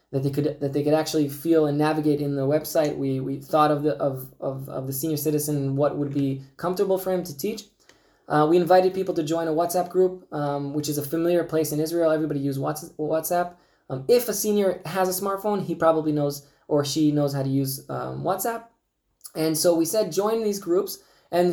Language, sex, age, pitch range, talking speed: English, male, 20-39, 145-175 Hz, 220 wpm